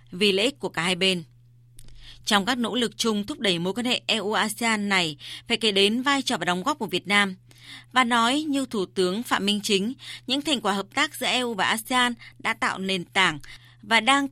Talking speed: 215 wpm